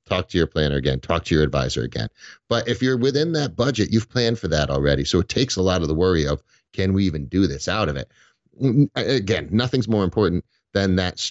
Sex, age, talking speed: male, 40-59, 235 wpm